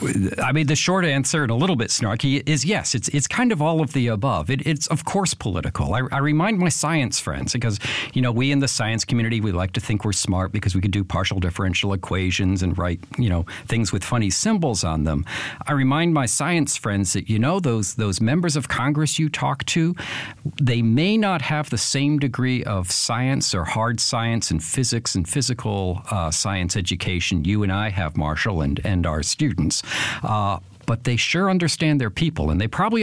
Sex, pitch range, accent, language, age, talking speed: male, 95-140 Hz, American, English, 50-69, 210 wpm